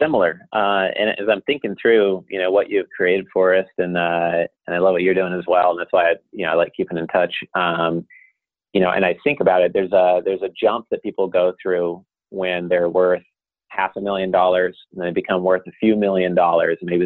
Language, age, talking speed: English, 30-49, 245 wpm